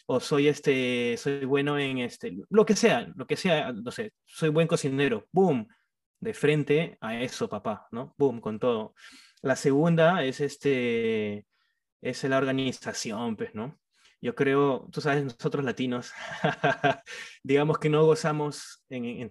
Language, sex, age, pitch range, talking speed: Spanish, male, 20-39, 130-185 Hz, 150 wpm